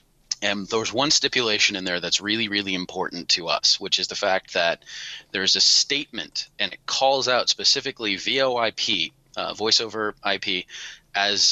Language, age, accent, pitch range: English, 30-49, American, 100-140 Hz